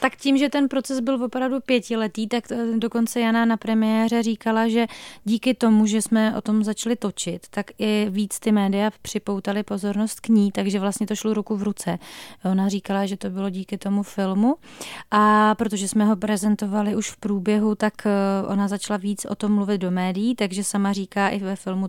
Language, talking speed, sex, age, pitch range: Czech, 190 wpm, female, 30-49, 200-225 Hz